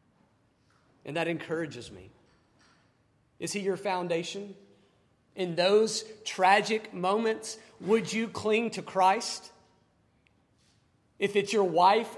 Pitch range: 185-235 Hz